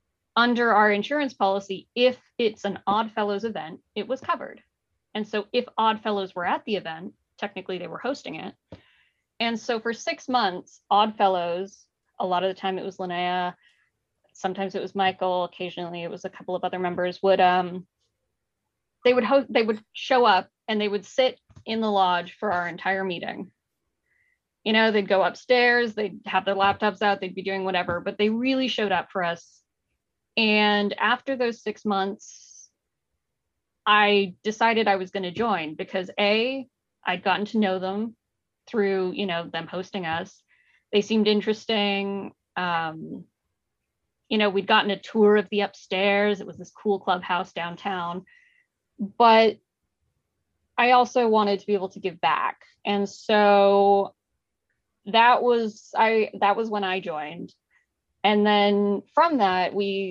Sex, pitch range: female, 185-220 Hz